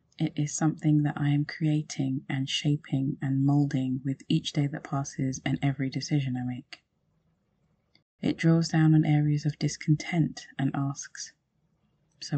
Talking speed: 150 wpm